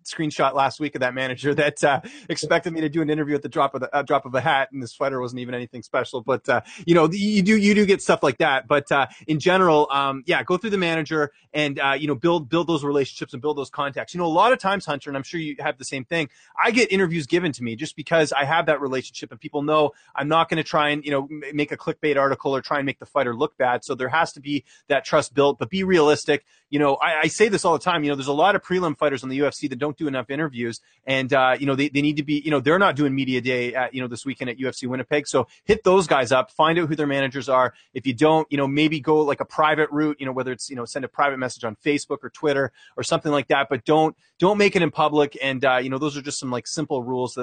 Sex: male